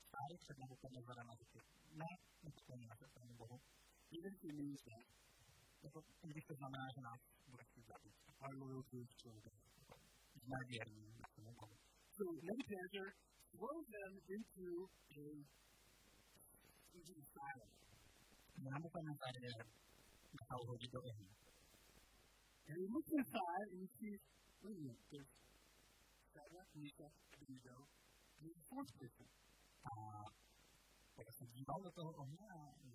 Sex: male